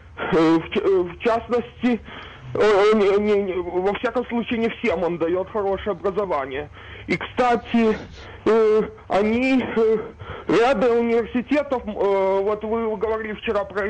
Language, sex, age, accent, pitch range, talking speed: Russian, male, 20-39, native, 195-235 Hz, 120 wpm